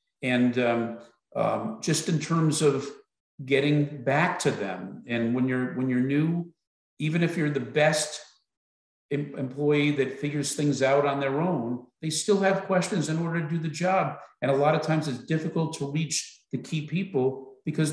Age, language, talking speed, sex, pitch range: 50-69, English, 175 wpm, male, 125-155 Hz